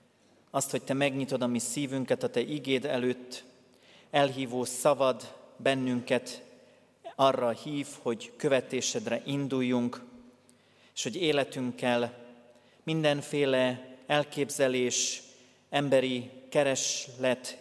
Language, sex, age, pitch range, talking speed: Hungarian, male, 40-59, 120-140 Hz, 90 wpm